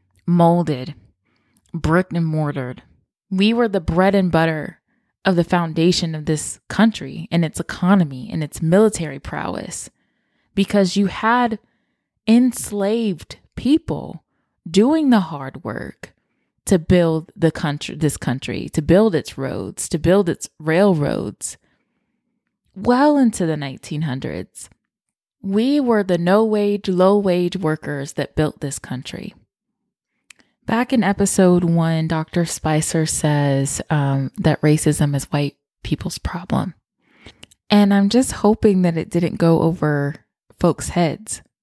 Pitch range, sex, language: 150-200 Hz, female, English